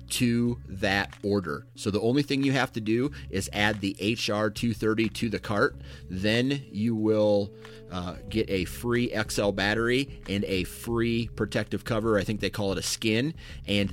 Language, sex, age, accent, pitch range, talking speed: English, male, 30-49, American, 95-115 Hz, 175 wpm